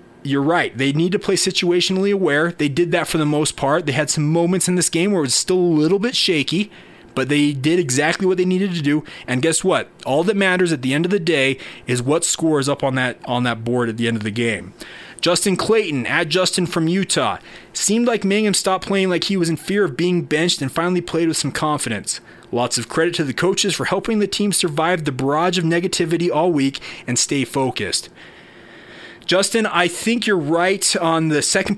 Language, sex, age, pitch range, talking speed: English, male, 30-49, 145-180 Hz, 225 wpm